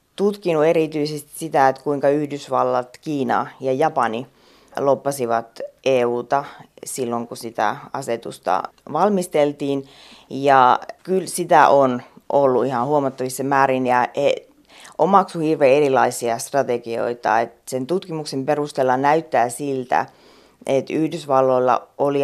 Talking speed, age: 105 wpm, 30-49